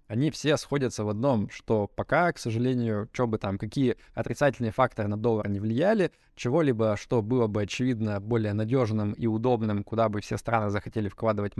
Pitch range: 105-130 Hz